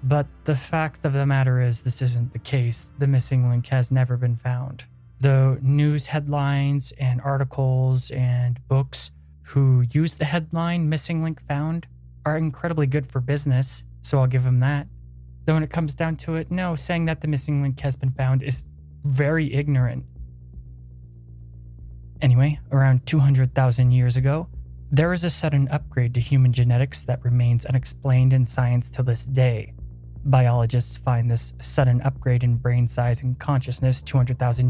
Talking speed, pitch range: 160 wpm, 120-140 Hz